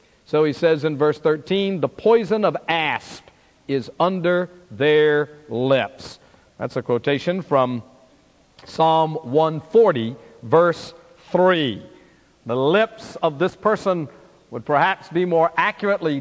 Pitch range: 150-200 Hz